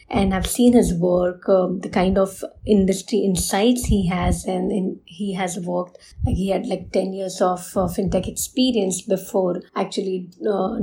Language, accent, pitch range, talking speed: English, Indian, 190-215 Hz, 160 wpm